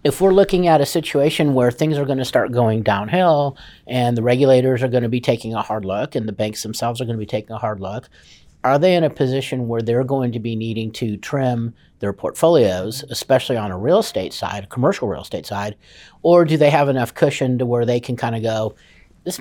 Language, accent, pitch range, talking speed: English, American, 115-145 Hz, 235 wpm